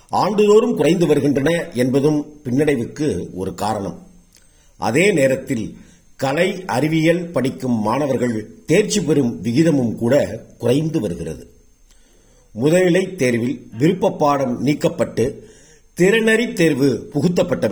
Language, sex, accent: Tamil, male, native